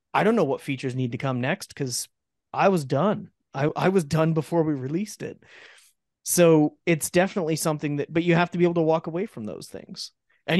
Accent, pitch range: American, 135-170 Hz